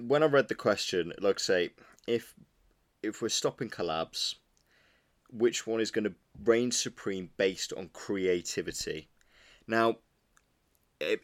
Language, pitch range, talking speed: English, 100-125 Hz, 130 wpm